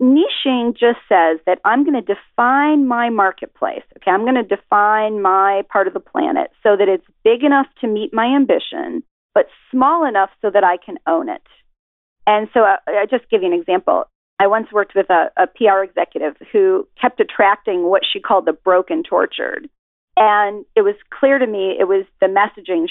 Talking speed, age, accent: 195 wpm, 40-59, American